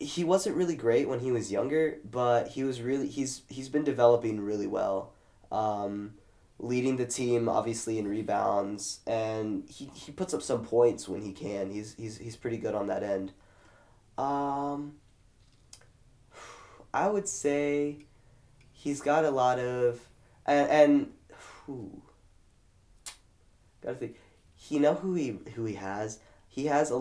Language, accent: English, American